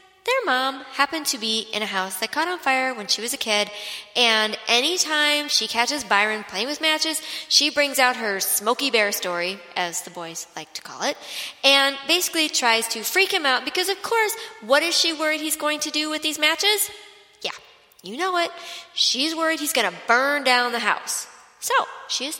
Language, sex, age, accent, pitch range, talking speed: English, female, 30-49, American, 210-315 Hz, 205 wpm